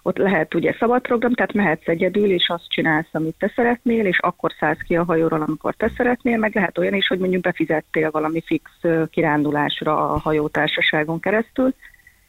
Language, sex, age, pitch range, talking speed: Hungarian, female, 30-49, 160-215 Hz, 175 wpm